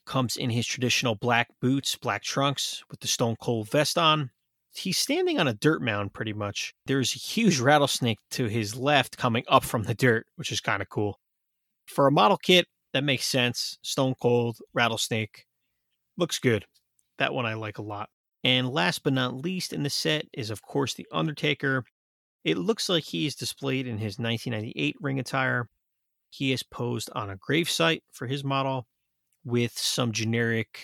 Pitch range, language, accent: 115-140 Hz, English, American